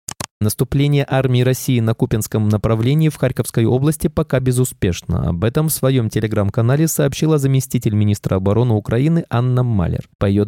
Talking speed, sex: 145 wpm, male